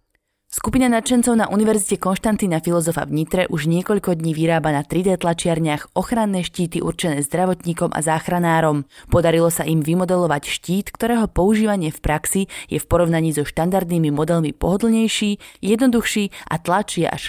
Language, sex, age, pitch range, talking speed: Slovak, female, 20-39, 160-200 Hz, 140 wpm